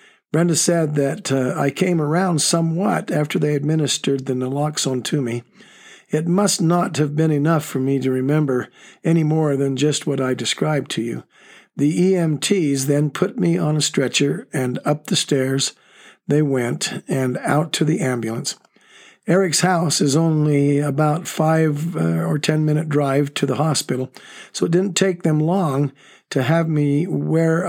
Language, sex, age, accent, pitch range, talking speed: English, male, 60-79, American, 140-165 Hz, 165 wpm